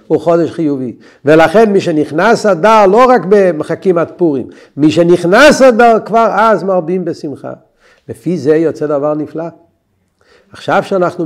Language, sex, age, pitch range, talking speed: Hebrew, male, 50-69, 130-170 Hz, 140 wpm